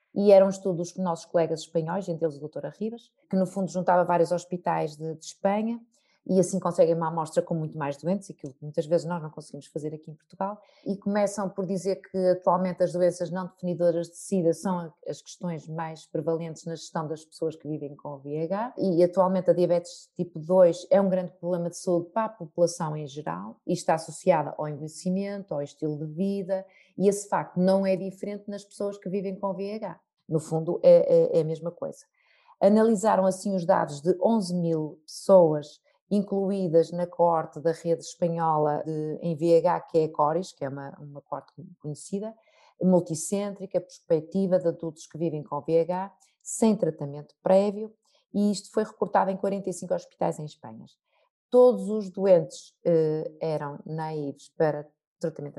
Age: 20-39